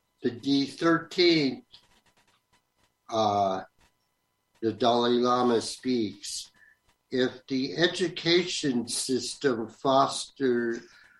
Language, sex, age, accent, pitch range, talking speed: English, male, 60-79, American, 110-130 Hz, 60 wpm